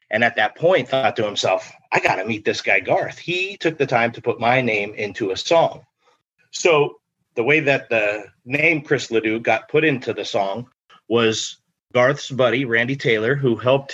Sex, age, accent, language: male, 30-49, American, English